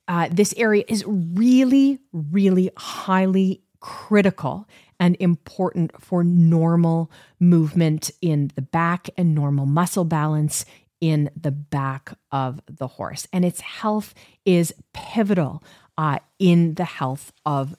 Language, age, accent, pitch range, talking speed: English, 30-49, American, 145-185 Hz, 120 wpm